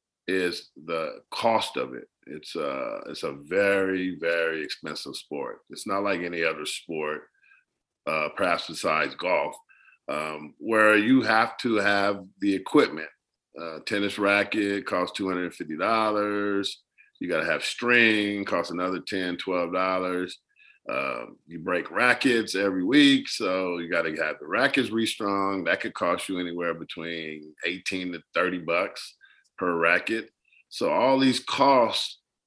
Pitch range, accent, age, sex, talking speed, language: 85-105 Hz, American, 50-69, male, 135 wpm, English